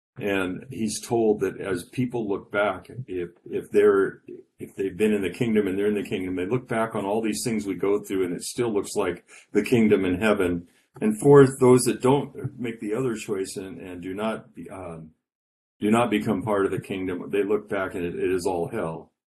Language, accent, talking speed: English, American, 225 wpm